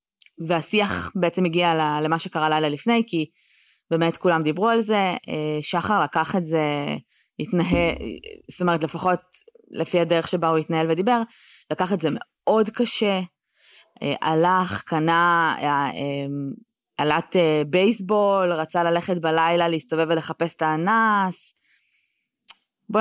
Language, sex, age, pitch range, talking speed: Hebrew, female, 20-39, 160-185 Hz, 115 wpm